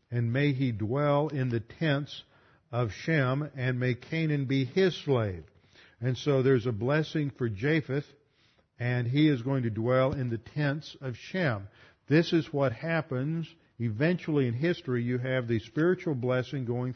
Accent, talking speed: American, 165 wpm